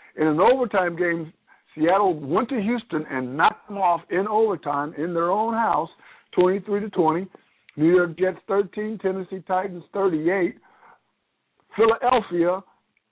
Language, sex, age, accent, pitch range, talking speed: English, male, 50-69, American, 165-205 Hz, 130 wpm